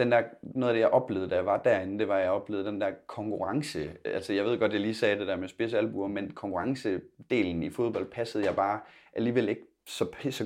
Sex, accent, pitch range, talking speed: male, native, 100-125 Hz, 230 wpm